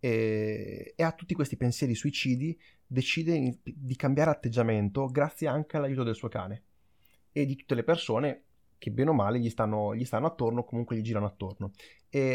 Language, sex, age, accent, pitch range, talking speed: Italian, male, 30-49, native, 110-145 Hz, 170 wpm